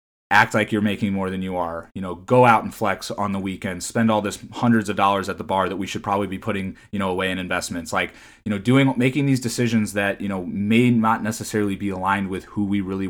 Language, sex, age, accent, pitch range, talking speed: English, male, 20-39, American, 100-115 Hz, 255 wpm